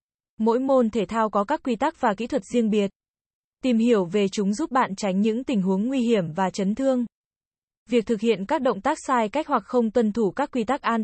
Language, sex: Vietnamese, female